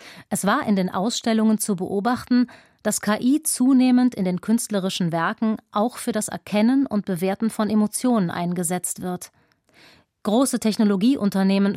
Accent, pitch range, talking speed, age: German, 190-225 Hz, 135 wpm, 30-49